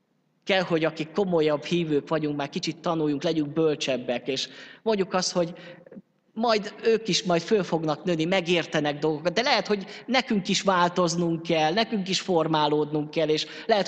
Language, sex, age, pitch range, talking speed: Hungarian, male, 20-39, 150-180 Hz, 160 wpm